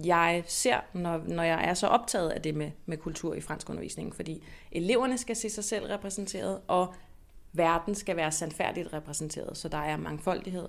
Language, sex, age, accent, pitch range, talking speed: Danish, female, 30-49, native, 165-210 Hz, 185 wpm